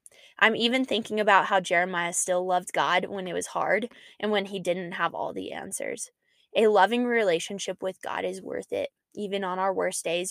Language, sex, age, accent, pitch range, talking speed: English, female, 10-29, American, 185-230 Hz, 200 wpm